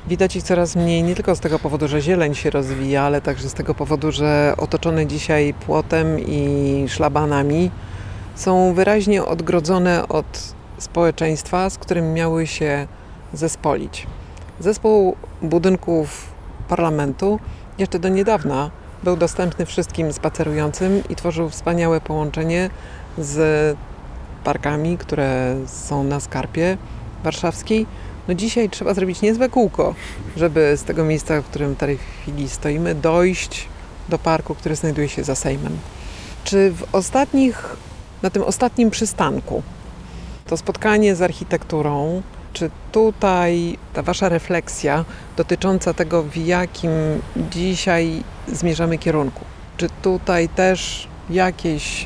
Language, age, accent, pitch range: Polish, 40-59, native, 145-180 Hz